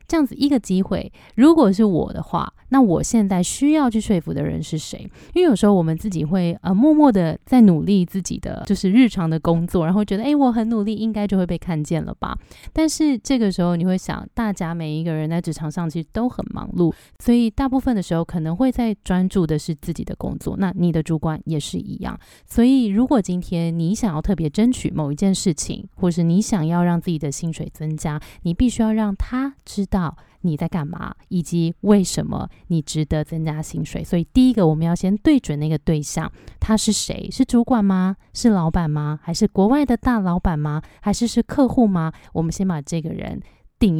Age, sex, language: 20-39, female, Chinese